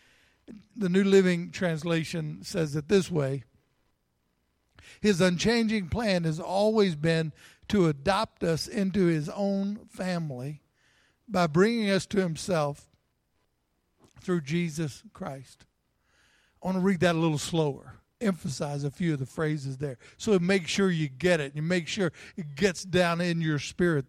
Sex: male